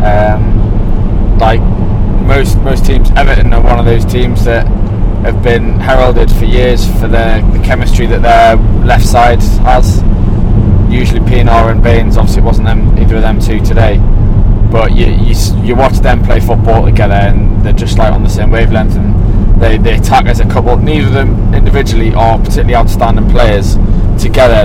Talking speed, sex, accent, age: 175 wpm, male, British, 20-39